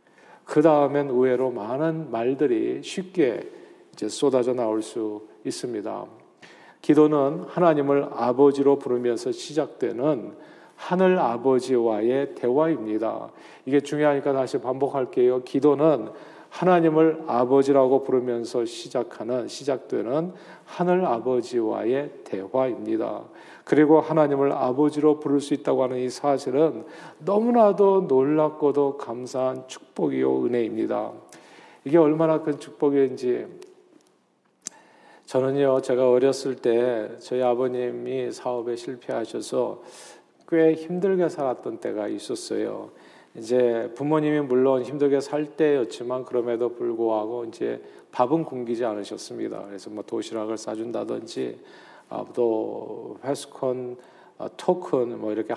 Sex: male